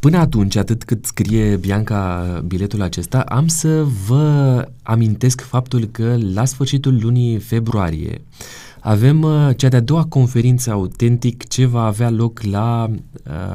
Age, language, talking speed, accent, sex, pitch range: 20-39, Romanian, 130 wpm, native, male, 105-130 Hz